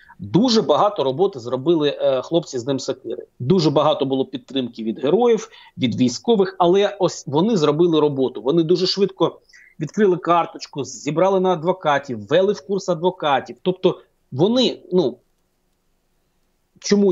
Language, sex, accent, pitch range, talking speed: Ukrainian, male, native, 135-195 Hz, 130 wpm